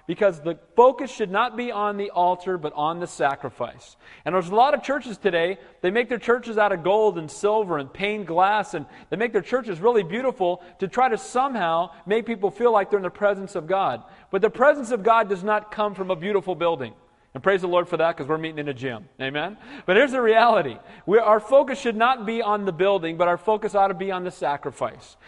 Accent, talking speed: American, 235 wpm